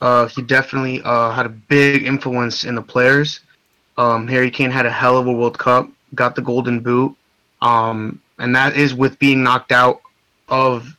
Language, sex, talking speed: English, male, 185 wpm